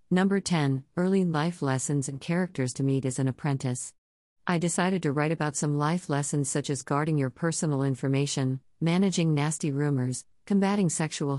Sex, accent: female, American